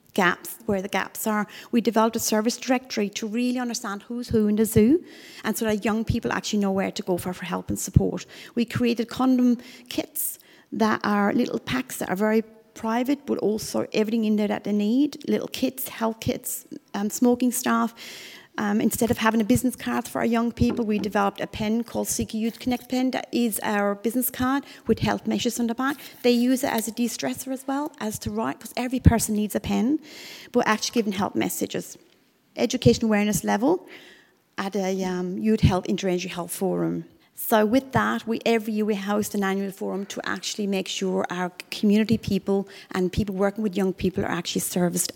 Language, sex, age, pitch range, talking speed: English, female, 40-59, 200-240 Hz, 200 wpm